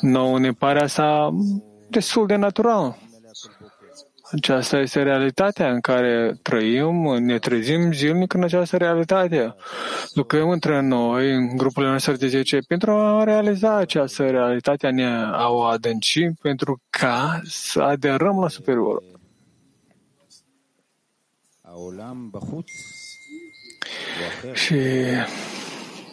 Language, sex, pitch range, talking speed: English, male, 130-170 Hz, 95 wpm